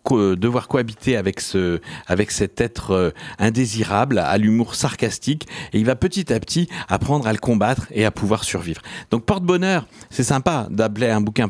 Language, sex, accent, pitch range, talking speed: French, male, French, 105-140 Hz, 170 wpm